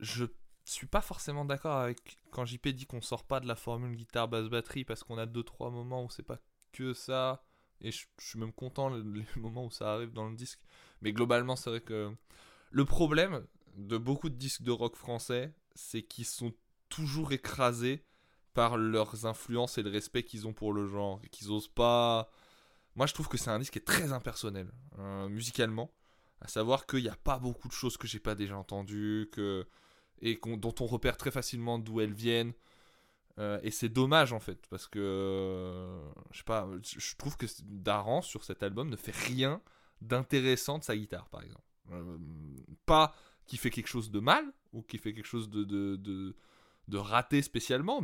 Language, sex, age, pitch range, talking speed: French, male, 20-39, 105-130 Hz, 200 wpm